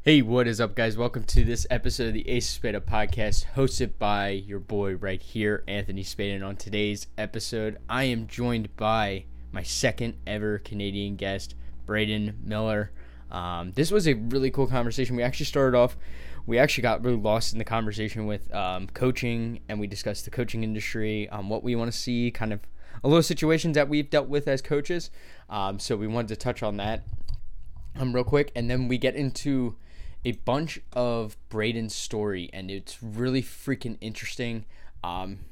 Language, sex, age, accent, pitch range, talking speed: English, male, 10-29, American, 100-120 Hz, 185 wpm